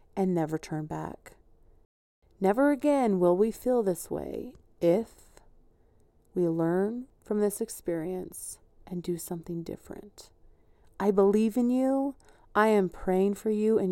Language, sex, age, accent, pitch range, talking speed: English, female, 30-49, American, 175-230 Hz, 135 wpm